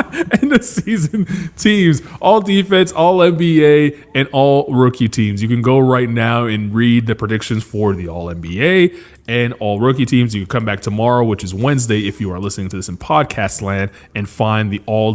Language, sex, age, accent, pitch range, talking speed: English, male, 20-39, American, 100-150 Hz, 200 wpm